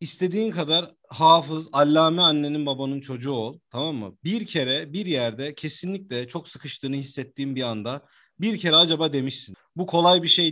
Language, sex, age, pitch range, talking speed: Turkish, male, 40-59, 140-180 Hz, 160 wpm